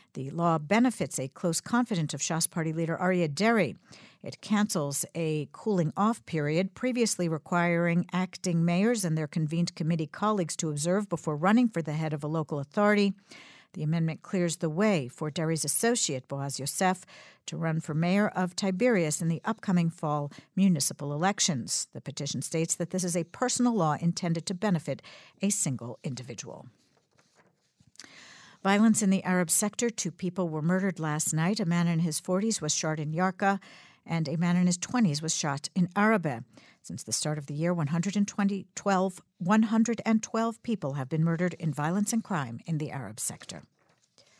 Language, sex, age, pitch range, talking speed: English, female, 60-79, 155-200 Hz, 170 wpm